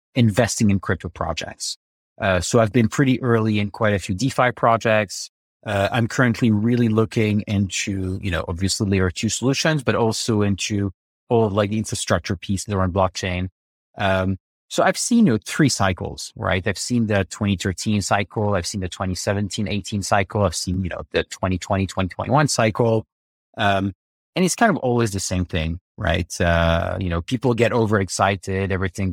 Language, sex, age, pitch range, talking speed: English, male, 30-49, 95-115 Hz, 165 wpm